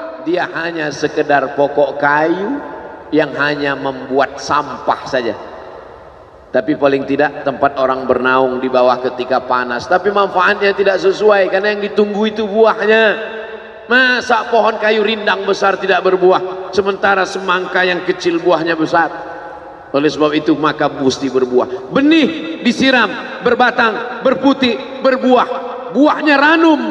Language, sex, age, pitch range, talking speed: Indonesian, male, 40-59, 150-250 Hz, 125 wpm